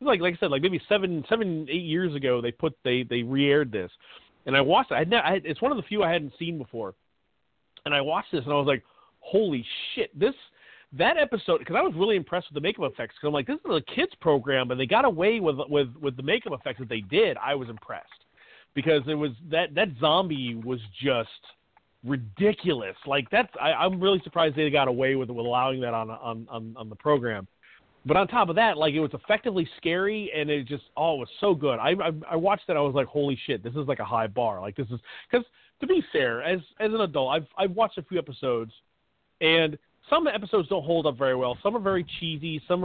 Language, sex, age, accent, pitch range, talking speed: English, male, 40-59, American, 135-185 Hz, 240 wpm